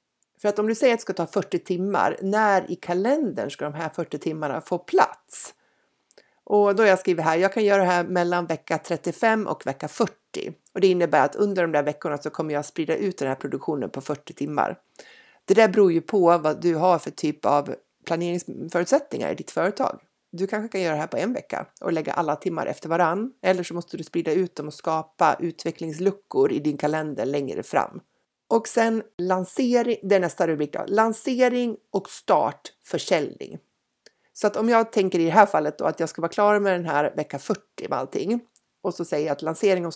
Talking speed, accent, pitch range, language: 210 wpm, native, 160-205 Hz, Swedish